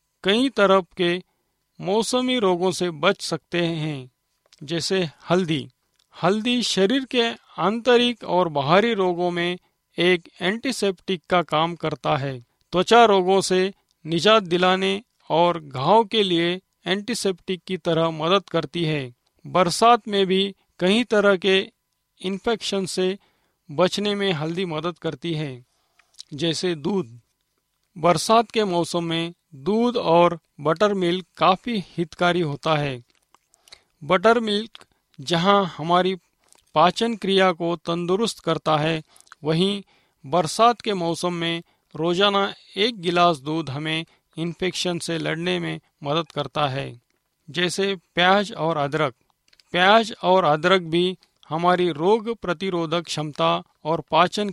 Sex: male